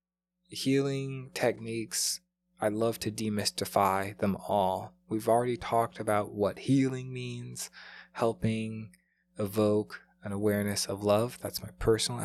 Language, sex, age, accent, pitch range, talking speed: English, male, 20-39, American, 100-130 Hz, 120 wpm